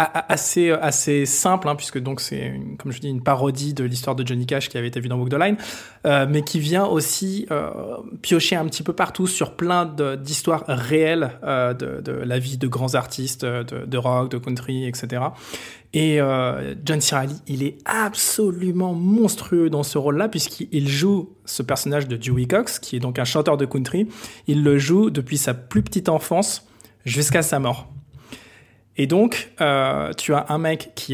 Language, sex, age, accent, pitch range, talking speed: French, male, 20-39, French, 135-160 Hz, 195 wpm